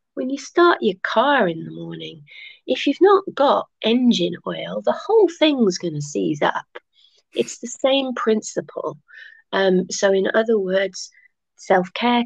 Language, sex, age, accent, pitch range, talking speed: English, female, 30-49, British, 180-235 Hz, 150 wpm